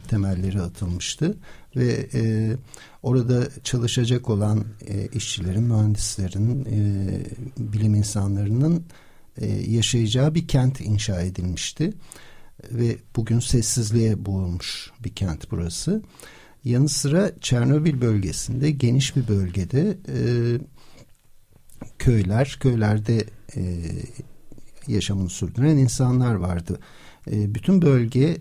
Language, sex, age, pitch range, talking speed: Turkish, male, 60-79, 105-130 Hz, 90 wpm